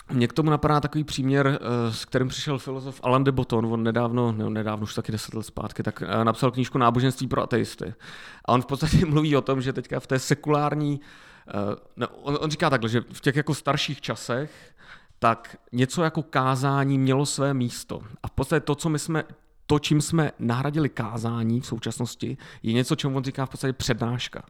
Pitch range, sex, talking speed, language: 120-145 Hz, male, 190 wpm, Czech